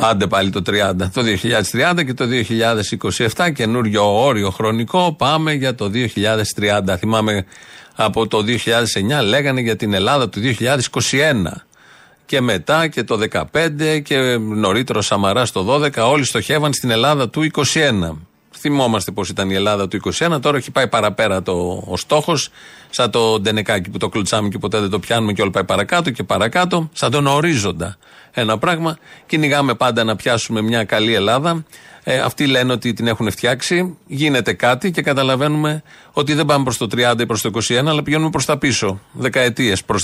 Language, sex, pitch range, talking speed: Greek, male, 105-140 Hz, 170 wpm